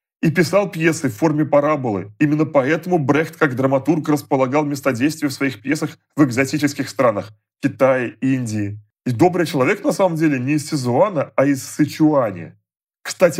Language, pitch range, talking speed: Russian, 130-165 Hz, 155 wpm